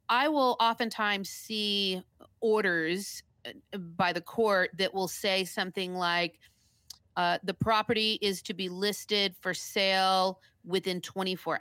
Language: English